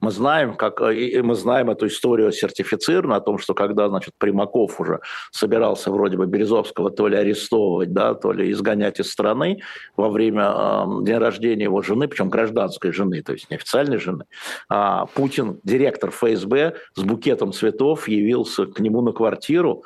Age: 50-69